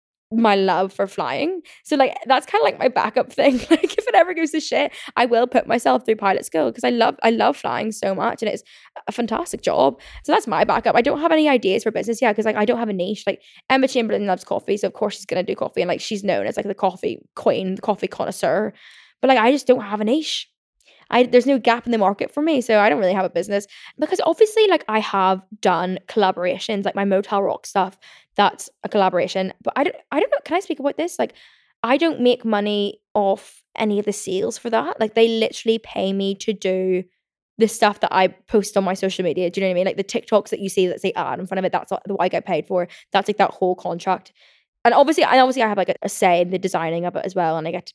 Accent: British